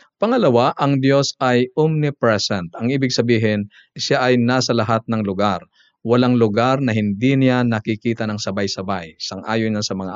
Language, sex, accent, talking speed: Filipino, male, native, 155 wpm